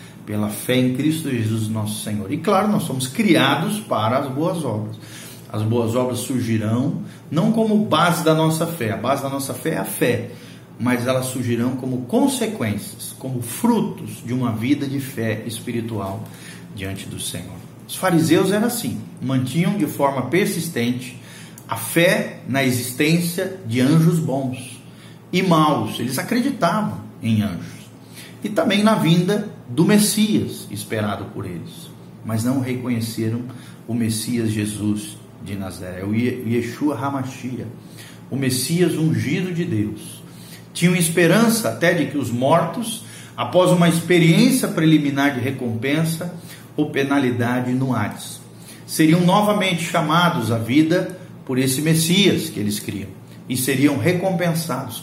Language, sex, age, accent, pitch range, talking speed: Portuguese, male, 40-59, Brazilian, 120-170 Hz, 140 wpm